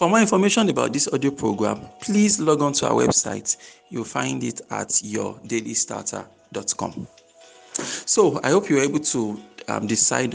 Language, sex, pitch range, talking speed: English, male, 110-140 Hz, 155 wpm